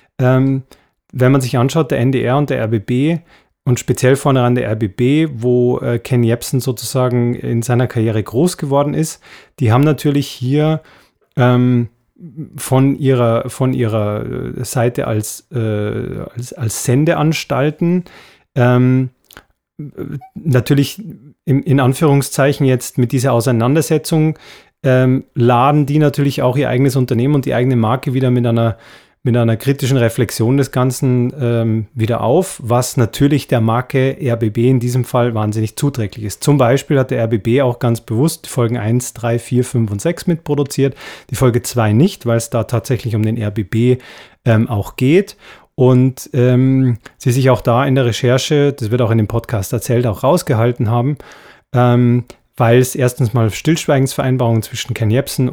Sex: male